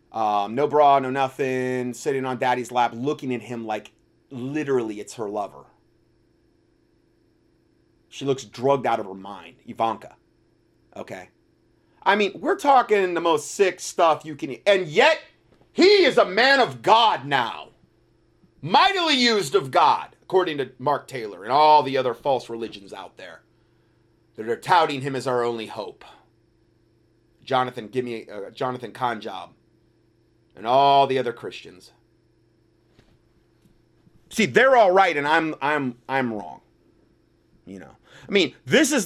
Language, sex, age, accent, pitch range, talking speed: English, male, 30-49, American, 115-145 Hz, 145 wpm